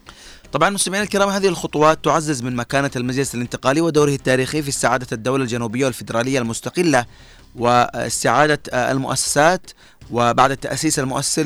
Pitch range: 115-145 Hz